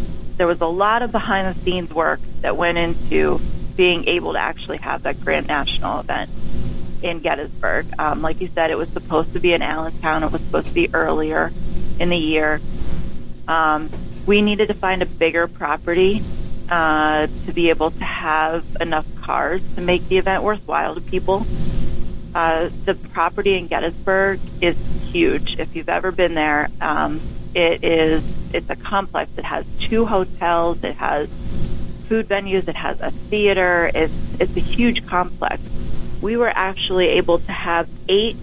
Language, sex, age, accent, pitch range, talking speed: English, female, 30-49, American, 155-190 Hz, 170 wpm